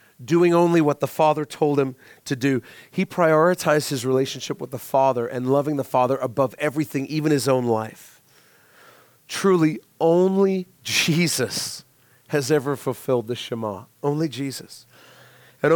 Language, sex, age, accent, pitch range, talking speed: English, male, 40-59, American, 120-155 Hz, 140 wpm